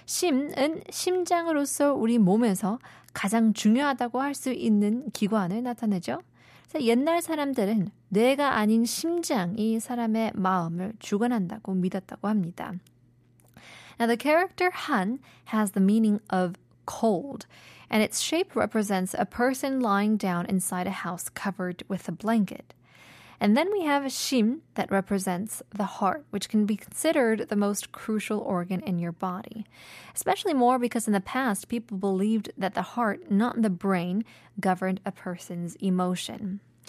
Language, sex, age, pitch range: Korean, female, 20-39, 195-255 Hz